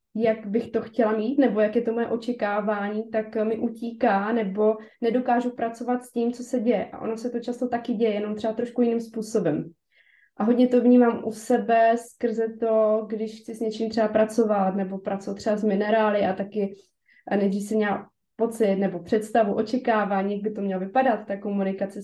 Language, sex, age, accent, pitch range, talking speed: Czech, female, 20-39, native, 205-235 Hz, 190 wpm